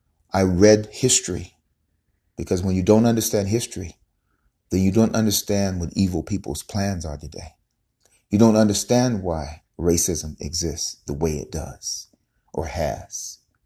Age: 40-59